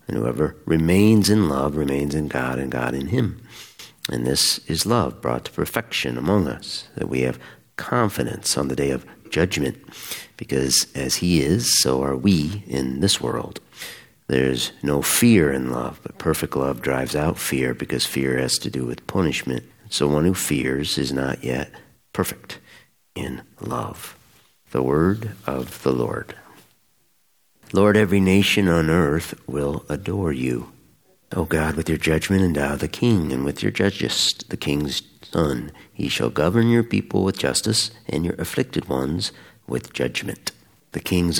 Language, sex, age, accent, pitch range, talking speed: English, male, 50-69, American, 65-85 Hz, 160 wpm